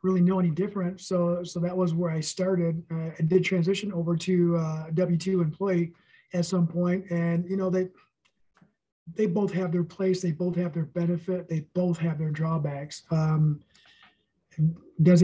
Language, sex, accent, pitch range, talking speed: English, male, American, 165-190 Hz, 175 wpm